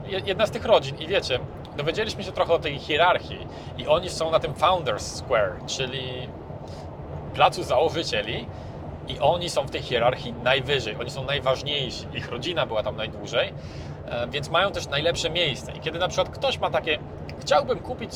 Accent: native